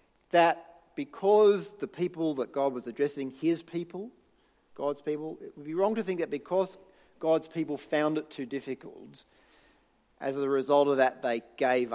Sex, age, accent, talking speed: male, 40-59, Australian, 165 wpm